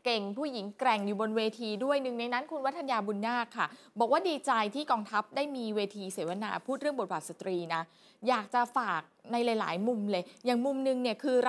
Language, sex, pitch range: Thai, female, 210-275 Hz